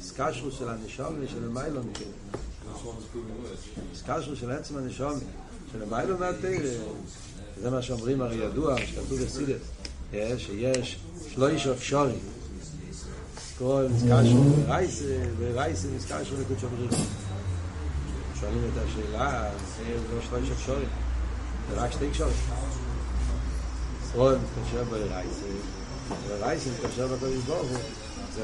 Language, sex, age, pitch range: Hebrew, male, 60-79, 95-130 Hz